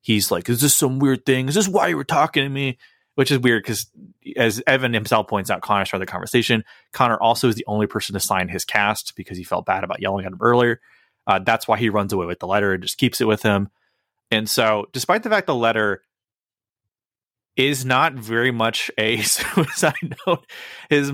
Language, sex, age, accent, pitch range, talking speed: English, male, 30-49, American, 100-130 Hz, 220 wpm